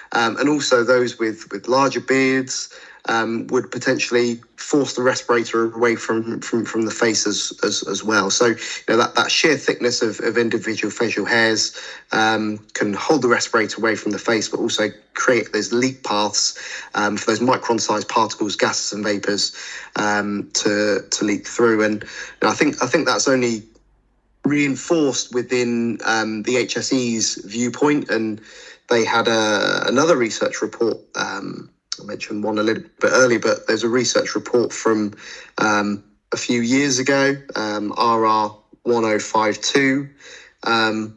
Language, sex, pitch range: English, male, 110-125 Hz